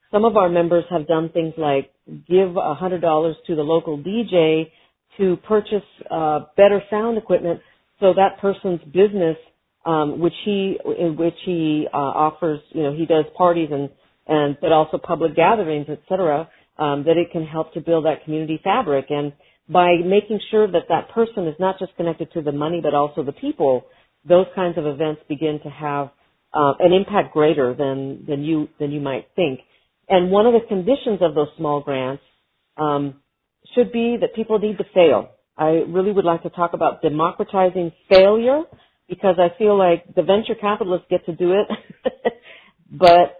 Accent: American